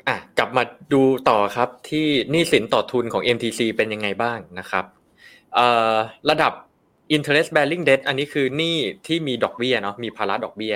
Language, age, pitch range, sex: Thai, 20-39, 95-130 Hz, male